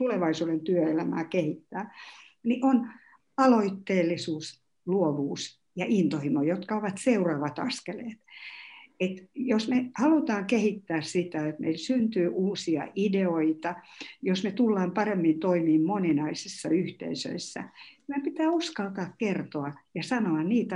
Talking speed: 115 wpm